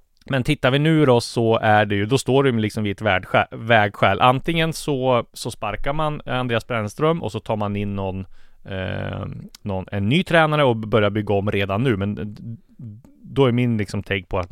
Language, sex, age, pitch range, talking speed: English, male, 30-49, 105-135 Hz, 205 wpm